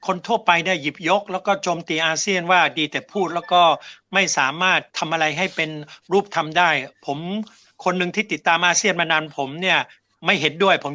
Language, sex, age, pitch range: Thai, male, 60-79, 160-200 Hz